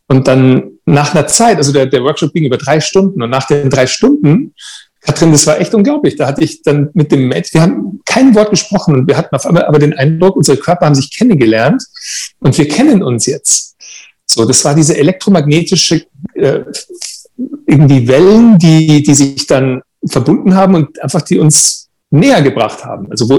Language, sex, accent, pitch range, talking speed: German, male, German, 135-190 Hz, 195 wpm